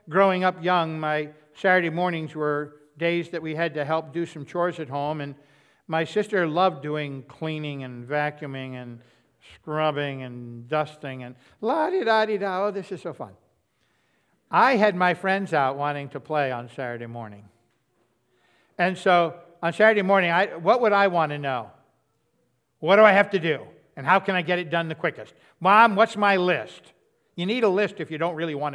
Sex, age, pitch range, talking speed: male, 60-79, 145-185 Hz, 180 wpm